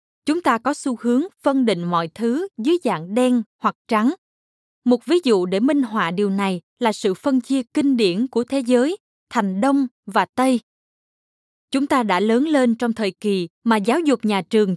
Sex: female